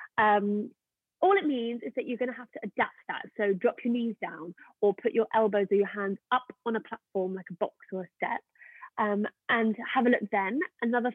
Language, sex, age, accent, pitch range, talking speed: English, female, 30-49, British, 200-245 Hz, 225 wpm